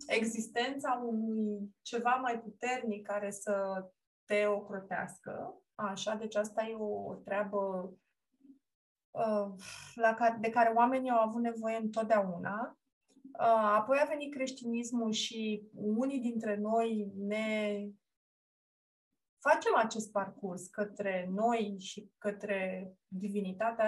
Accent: native